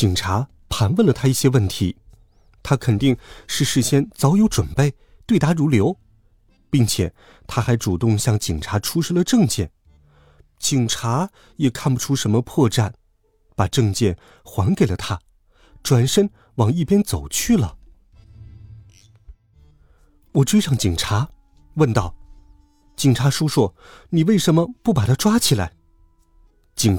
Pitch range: 95-150 Hz